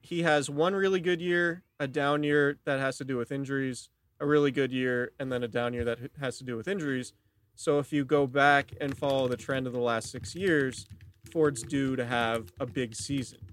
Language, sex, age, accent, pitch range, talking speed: English, male, 30-49, American, 120-145 Hz, 225 wpm